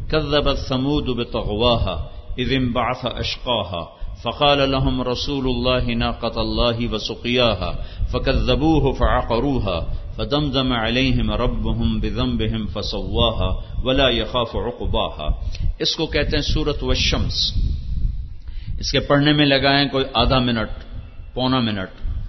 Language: English